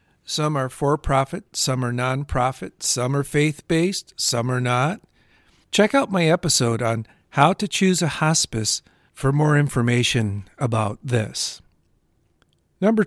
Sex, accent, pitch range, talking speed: male, American, 125-155 Hz, 130 wpm